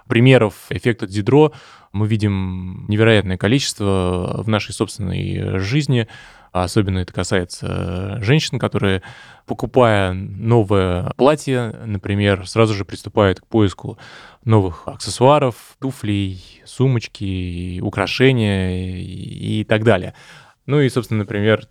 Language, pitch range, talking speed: Russian, 95-120 Hz, 100 wpm